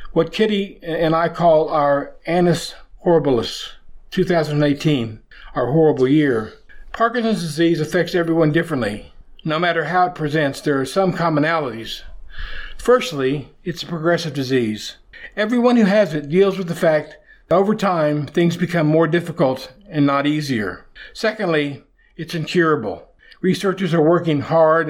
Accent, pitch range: American, 145-175 Hz